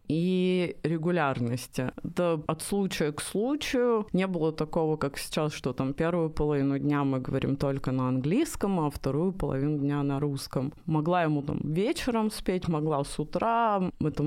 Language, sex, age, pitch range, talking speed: Russian, female, 20-39, 150-180 Hz, 155 wpm